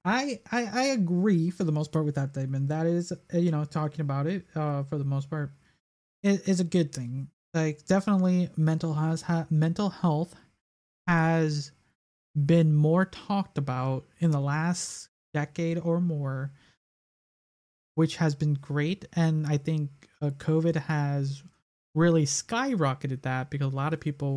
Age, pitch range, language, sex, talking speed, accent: 20-39, 140-170 Hz, English, male, 160 wpm, American